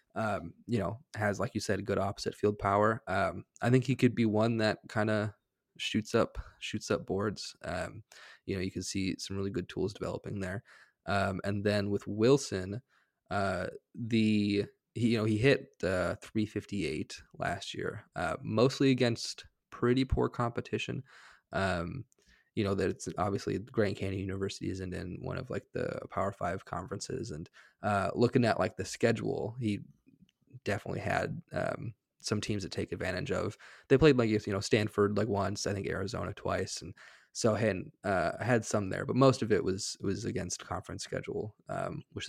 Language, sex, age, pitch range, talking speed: English, male, 20-39, 100-115 Hz, 180 wpm